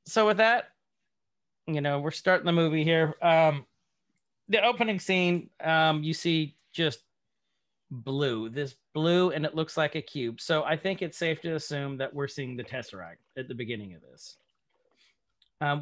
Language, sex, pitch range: English, male, 130-165 Hz